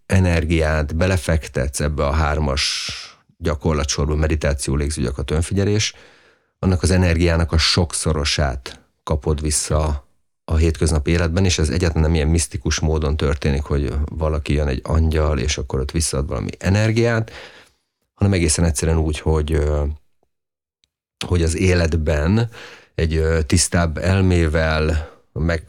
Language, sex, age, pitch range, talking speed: Hungarian, male, 30-49, 75-85 Hz, 115 wpm